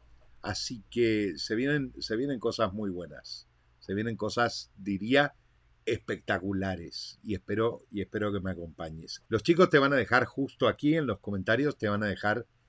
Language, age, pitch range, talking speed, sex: Spanish, 50-69, 100-125 Hz, 160 wpm, male